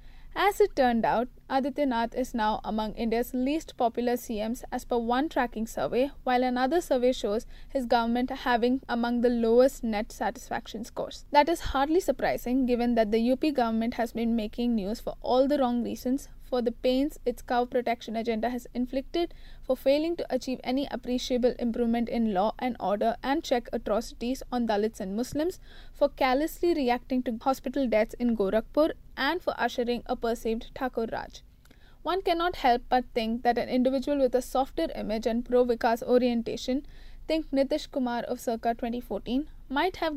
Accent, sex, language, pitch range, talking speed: Indian, female, English, 230-270 Hz, 170 wpm